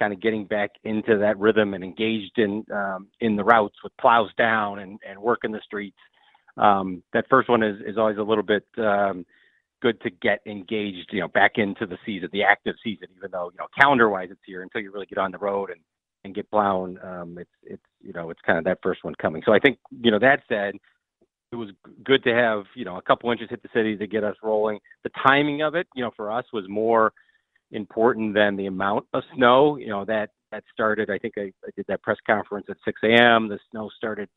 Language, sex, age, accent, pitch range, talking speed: English, male, 40-59, American, 100-115 Hz, 240 wpm